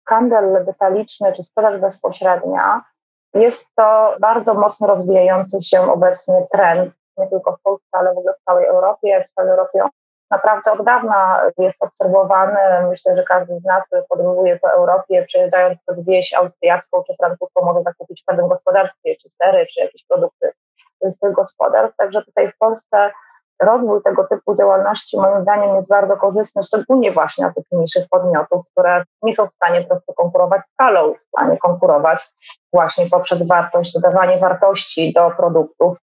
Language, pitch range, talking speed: Polish, 180-240 Hz, 160 wpm